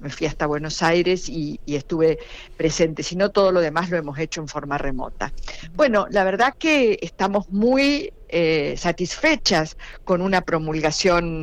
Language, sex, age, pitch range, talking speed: Spanish, female, 50-69, 150-185 Hz, 165 wpm